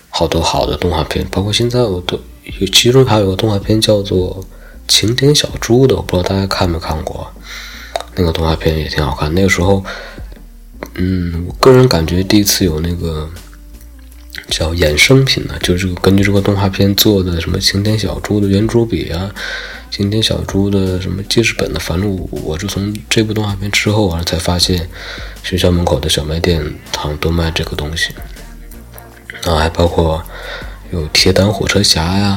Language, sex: Chinese, male